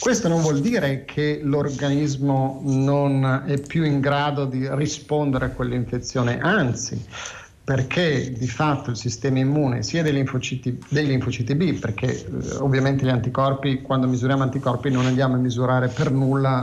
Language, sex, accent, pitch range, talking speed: Italian, male, native, 130-170 Hz, 150 wpm